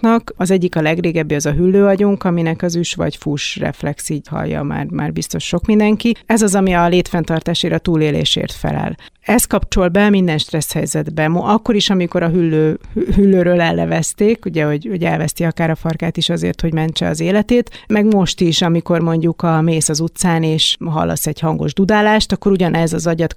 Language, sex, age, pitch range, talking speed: Hungarian, female, 30-49, 160-190 Hz, 185 wpm